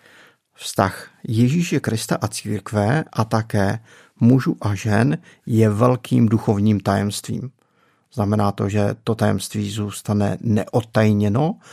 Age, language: 50-69, Czech